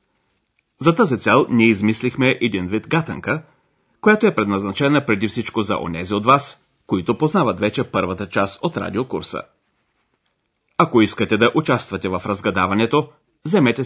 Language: Bulgarian